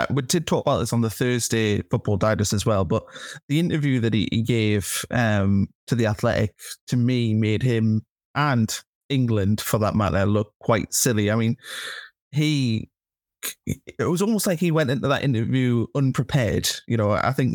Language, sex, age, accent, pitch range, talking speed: English, male, 20-39, British, 110-135 Hz, 180 wpm